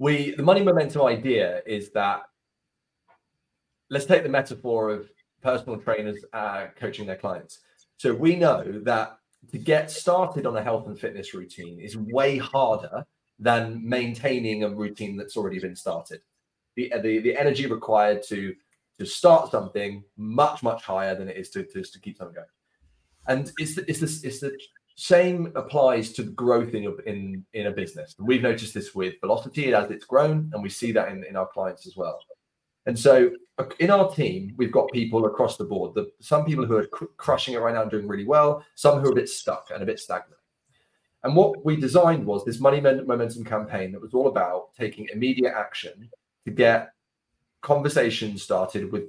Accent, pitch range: British, 105-145 Hz